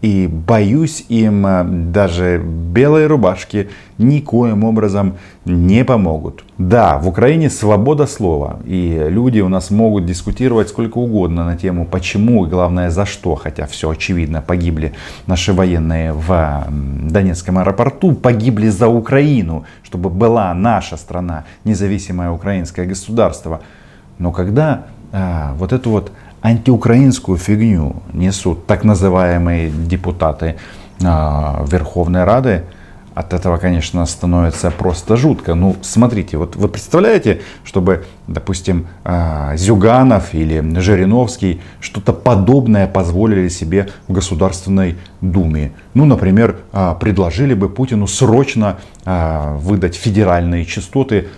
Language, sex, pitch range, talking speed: Russian, male, 85-105 Hz, 110 wpm